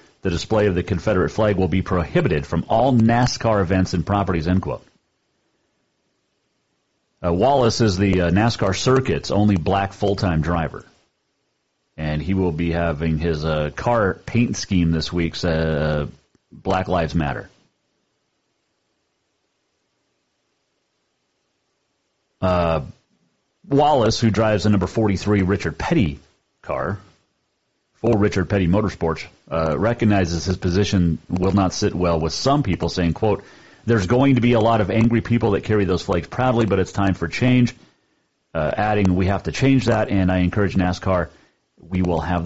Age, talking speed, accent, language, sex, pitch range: 40-59, 145 wpm, American, English, male, 85-110 Hz